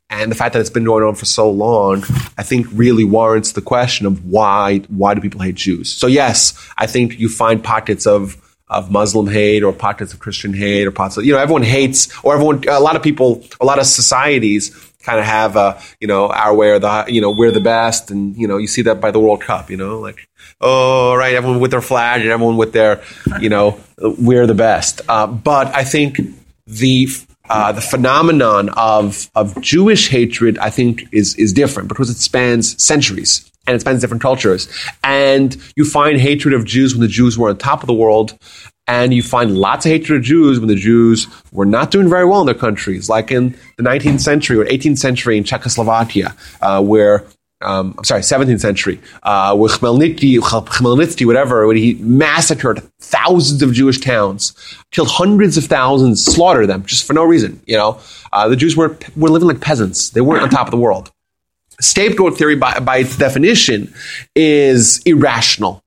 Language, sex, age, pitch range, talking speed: English, male, 30-49, 105-135 Hz, 200 wpm